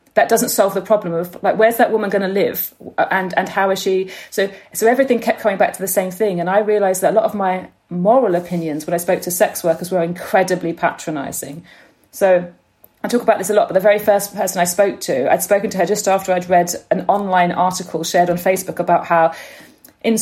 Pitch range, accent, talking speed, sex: 180-230 Hz, British, 235 wpm, female